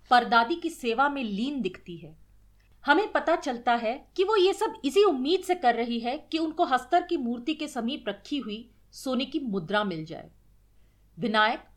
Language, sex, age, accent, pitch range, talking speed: Hindi, female, 40-59, native, 210-310 Hz, 185 wpm